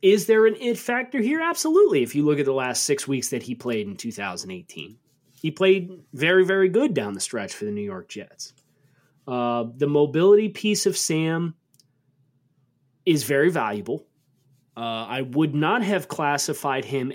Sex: male